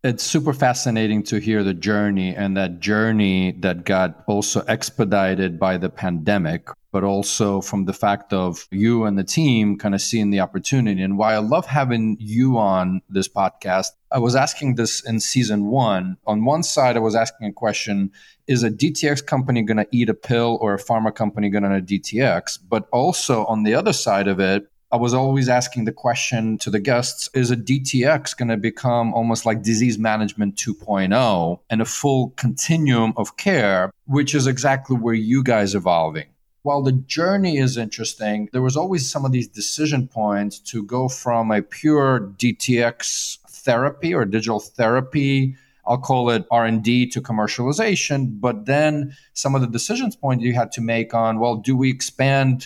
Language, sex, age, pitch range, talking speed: English, male, 30-49, 105-135 Hz, 180 wpm